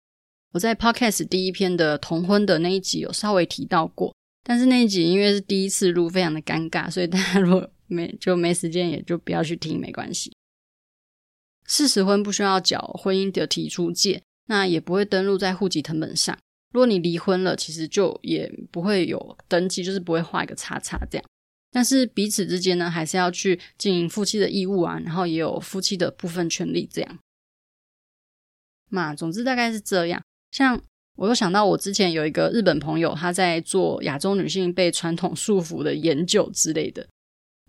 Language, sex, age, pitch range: Chinese, female, 20-39, 170-200 Hz